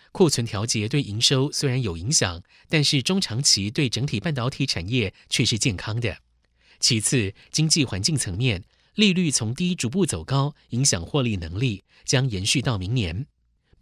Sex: male